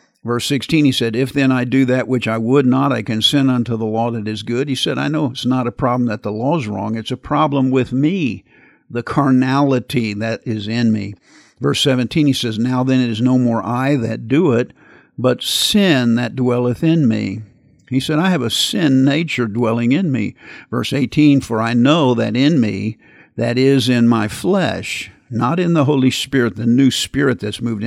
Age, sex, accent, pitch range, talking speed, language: 50-69, male, American, 115-135 Hz, 210 wpm, English